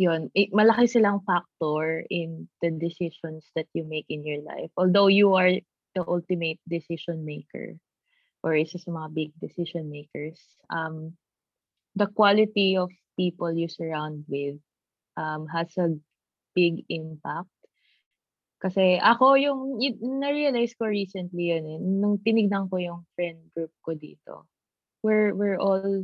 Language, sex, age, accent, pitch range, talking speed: Filipino, female, 20-39, native, 160-195 Hz, 135 wpm